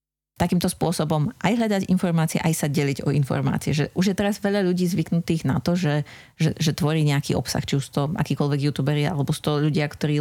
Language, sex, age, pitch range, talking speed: Slovak, female, 30-49, 145-170 Hz, 200 wpm